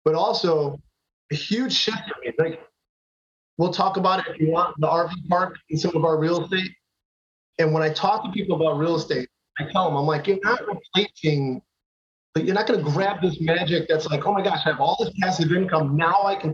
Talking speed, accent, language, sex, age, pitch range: 230 wpm, American, English, male, 30-49, 155-185 Hz